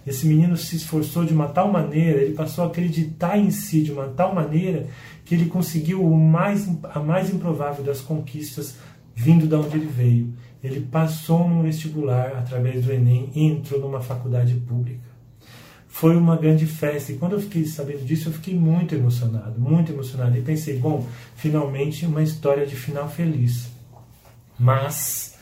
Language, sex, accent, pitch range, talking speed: Portuguese, male, Brazilian, 125-160 Hz, 170 wpm